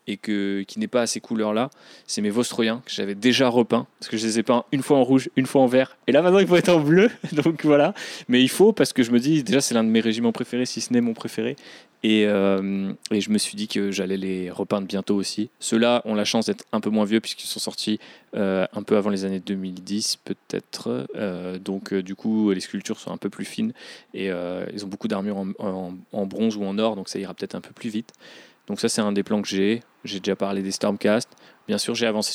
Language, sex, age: French, male, 20-39